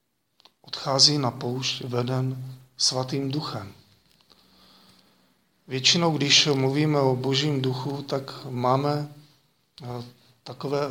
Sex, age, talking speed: male, 40-59, 75 wpm